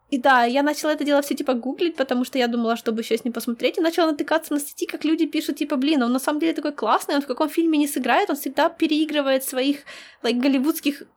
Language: Ukrainian